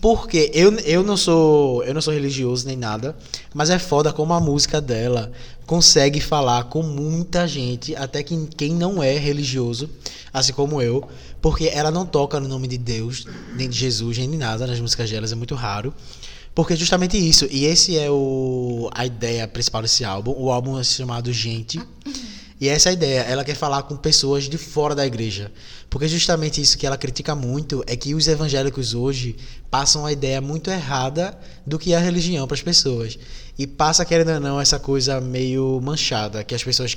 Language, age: Portuguese, 20-39